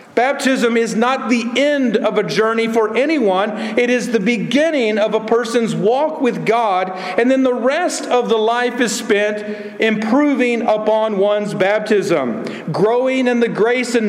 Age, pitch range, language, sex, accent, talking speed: 50-69, 185-235 Hz, English, male, American, 160 wpm